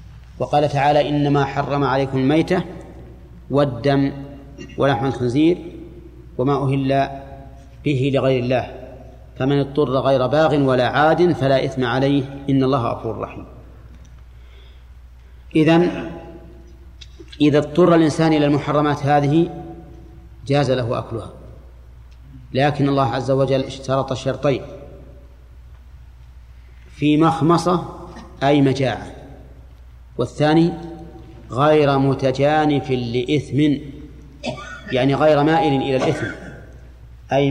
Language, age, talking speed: Arabic, 40-59, 90 wpm